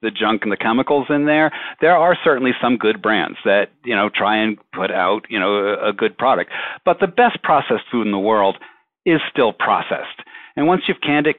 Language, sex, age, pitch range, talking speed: English, male, 50-69, 110-135 Hz, 215 wpm